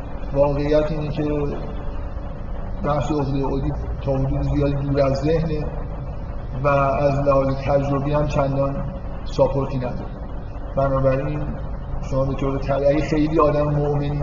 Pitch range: 135-150 Hz